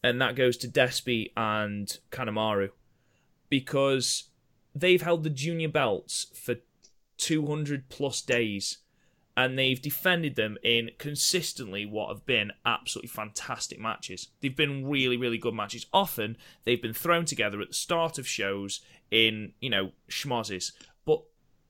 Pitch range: 105-145 Hz